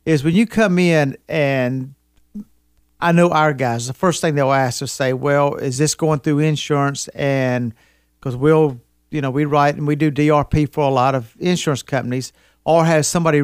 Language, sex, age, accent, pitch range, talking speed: English, male, 50-69, American, 130-165 Hz, 190 wpm